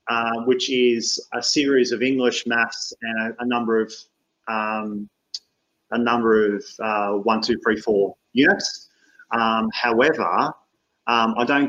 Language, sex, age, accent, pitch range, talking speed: English, male, 30-49, Australian, 110-125 Hz, 155 wpm